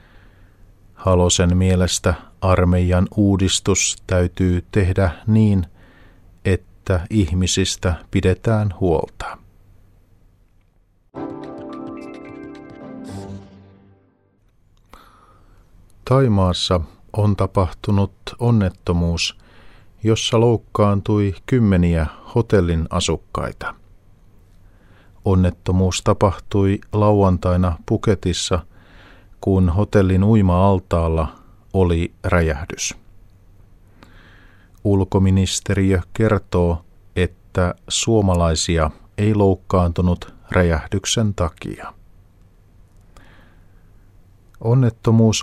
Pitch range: 90-100 Hz